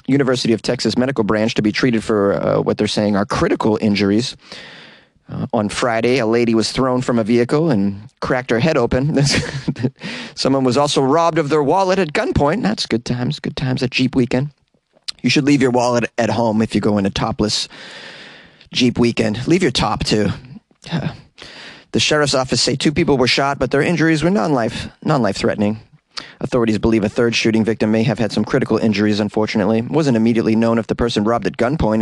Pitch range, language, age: 110-135 Hz, English, 30-49